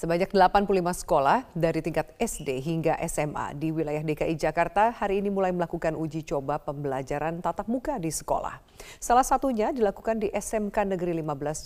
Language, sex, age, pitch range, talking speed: Indonesian, female, 40-59, 160-200 Hz, 155 wpm